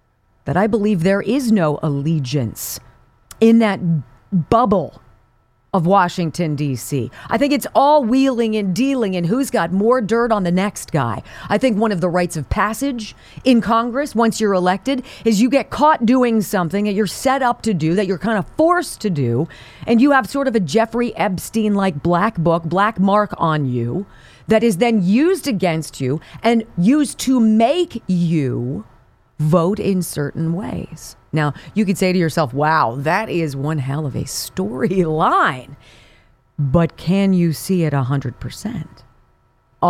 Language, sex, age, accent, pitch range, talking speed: English, female, 40-59, American, 150-230 Hz, 165 wpm